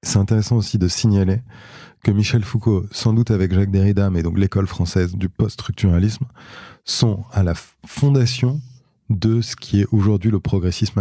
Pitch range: 95-115 Hz